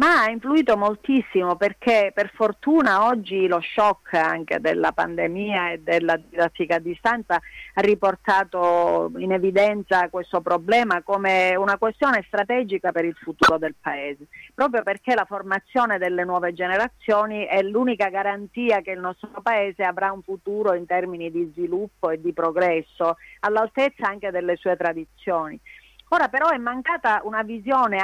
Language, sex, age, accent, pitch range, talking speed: Italian, female, 40-59, native, 180-230 Hz, 145 wpm